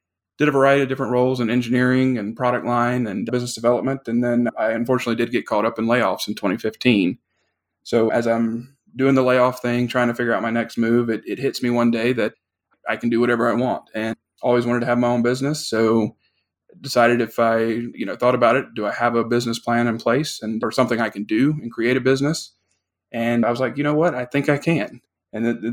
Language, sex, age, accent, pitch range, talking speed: English, male, 20-39, American, 115-125 Hz, 235 wpm